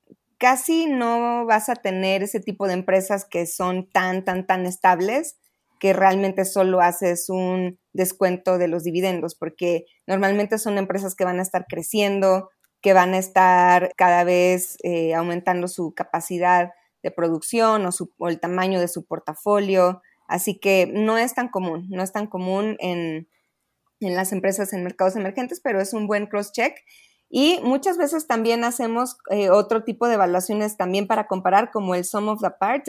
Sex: female